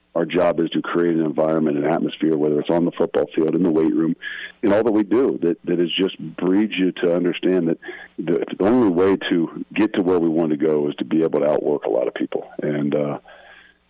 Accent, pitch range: American, 80-95 Hz